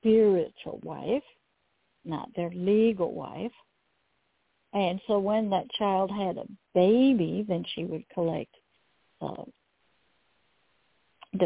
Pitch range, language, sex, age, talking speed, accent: 185-235 Hz, English, female, 60-79, 105 wpm, American